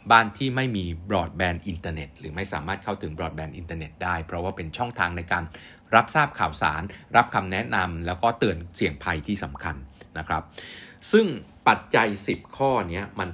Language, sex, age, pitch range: Thai, male, 60-79, 85-110 Hz